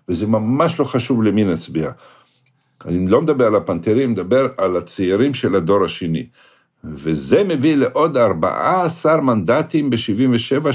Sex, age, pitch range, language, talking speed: male, 50-69, 95-135 Hz, Hebrew, 135 wpm